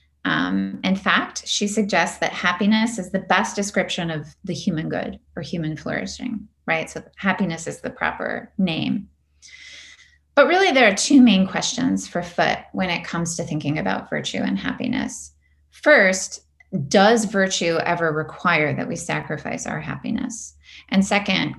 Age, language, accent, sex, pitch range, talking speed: 30-49, English, American, female, 155-215 Hz, 155 wpm